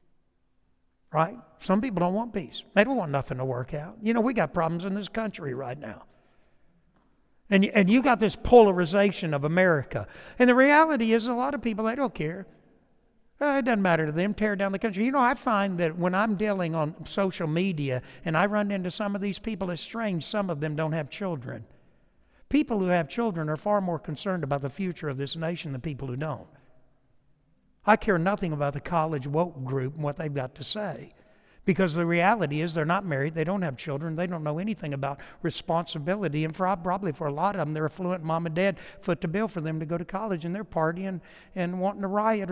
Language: English